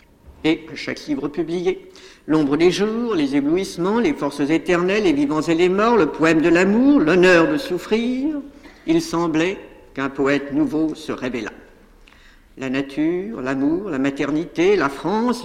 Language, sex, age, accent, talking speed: French, female, 60-79, French, 150 wpm